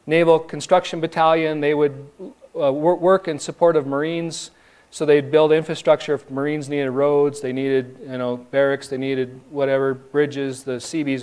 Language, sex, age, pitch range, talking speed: English, male, 40-59, 145-170 Hz, 160 wpm